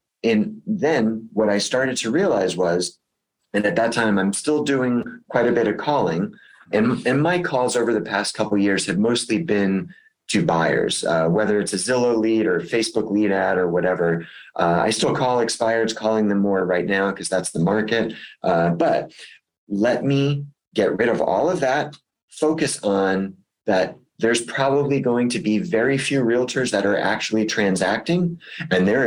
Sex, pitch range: male, 100-130 Hz